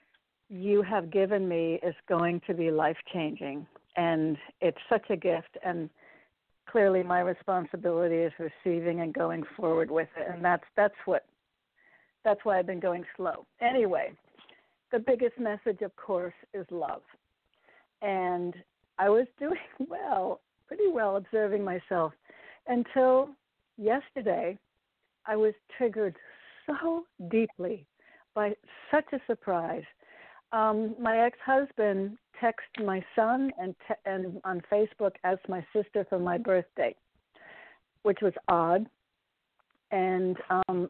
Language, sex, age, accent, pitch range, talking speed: English, female, 60-79, American, 175-215 Hz, 125 wpm